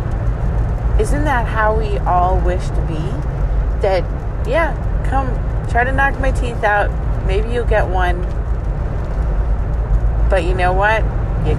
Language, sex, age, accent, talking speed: English, female, 30-49, American, 135 wpm